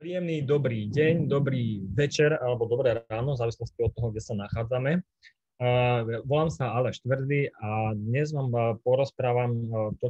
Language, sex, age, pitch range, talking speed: Slovak, male, 20-39, 110-130 Hz, 155 wpm